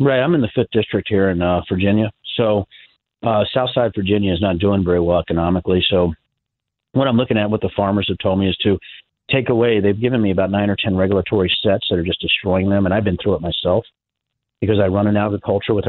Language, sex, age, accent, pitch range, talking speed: English, male, 40-59, American, 90-110 Hz, 230 wpm